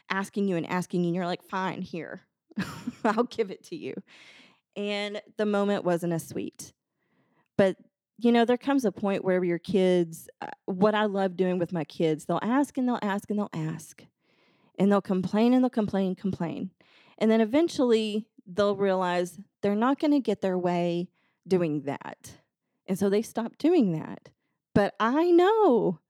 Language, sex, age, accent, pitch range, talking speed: English, female, 20-39, American, 180-220 Hz, 175 wpm